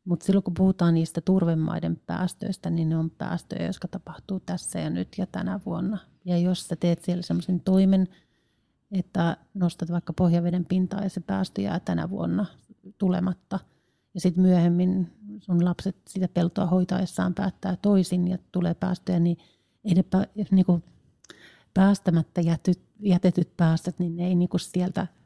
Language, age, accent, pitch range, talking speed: Finnish, 40-59, native, 175-190 Hz, 145 wpm